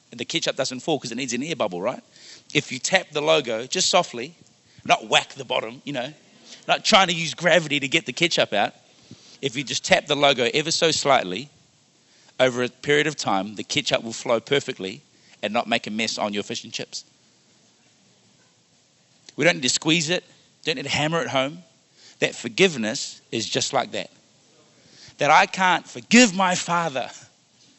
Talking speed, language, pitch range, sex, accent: 190 wpm, English, 125-170 Hz, male, Australian